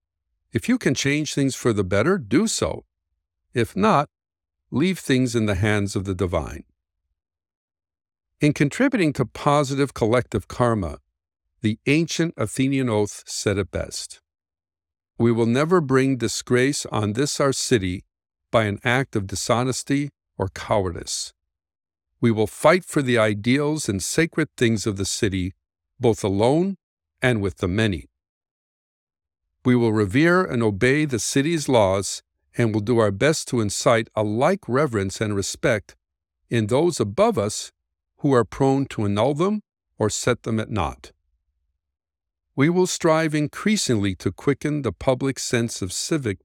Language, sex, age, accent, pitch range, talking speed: English, male, 50-69, American, 85-135 Hz, 145 wpm